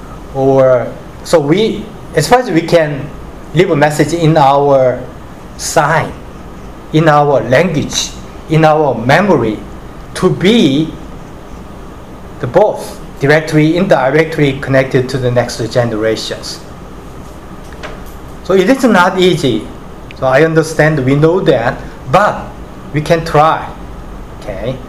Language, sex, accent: Korean, male, Japanese